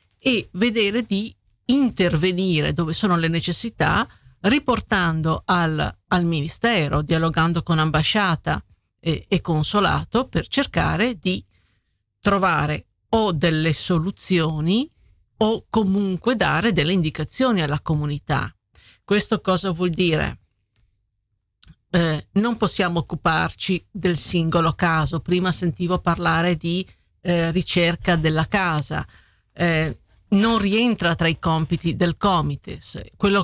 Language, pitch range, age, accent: Dutch, 160-195 Hz, 50-69, Italian